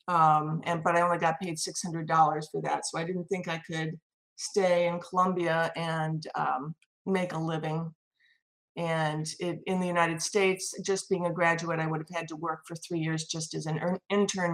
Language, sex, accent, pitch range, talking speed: English, female, American, 160-180 Hz, 190 wpm